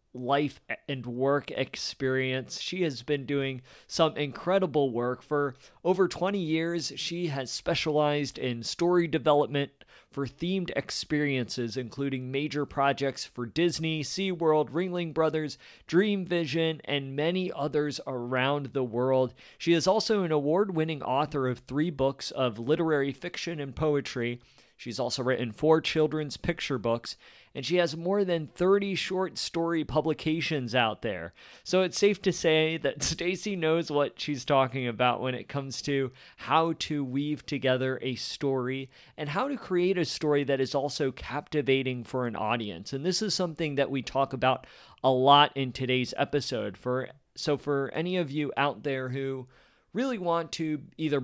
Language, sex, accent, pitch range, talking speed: English, male, American, 130-165 Hz, 155 wpm